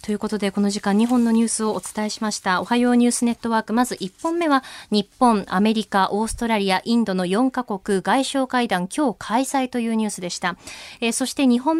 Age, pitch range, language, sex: 20-39, 210-295 Hz, Japanese, female